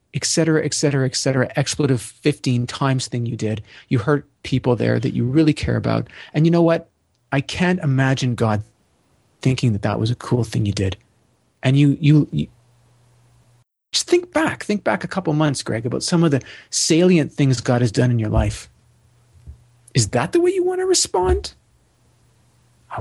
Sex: male